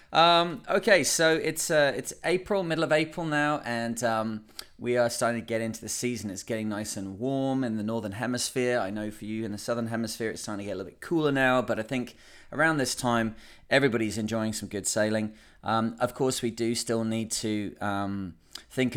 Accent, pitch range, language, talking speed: British, 105-125 Hz, English, 215 wpm